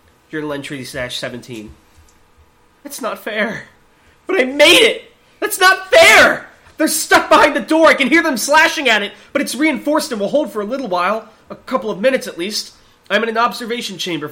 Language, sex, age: English, male, 30-49